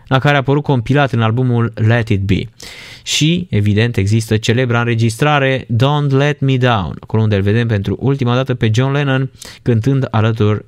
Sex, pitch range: male, 115-145 Hz